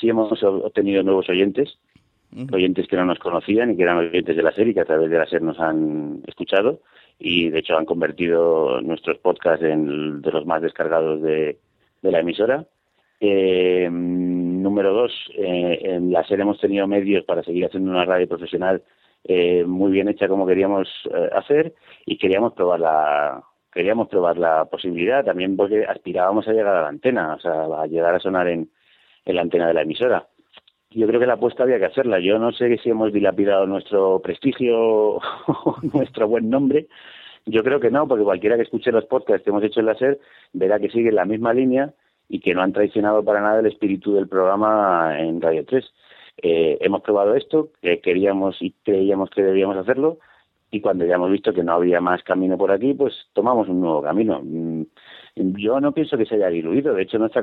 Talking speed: 195 wpm